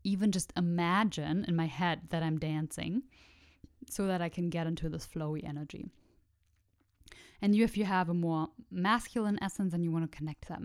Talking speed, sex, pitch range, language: 190 wpm, female, 160-195 Hz, English